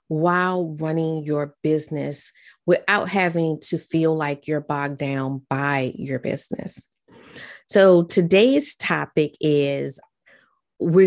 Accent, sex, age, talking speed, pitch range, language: American, female, 30-49, 110 wpm, 155-195 Hz, English